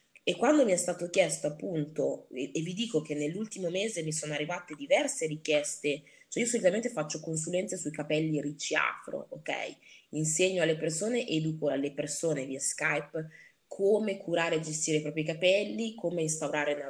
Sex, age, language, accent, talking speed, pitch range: female, 20-39, Italian, native, 165 wpm, 150-205 Hz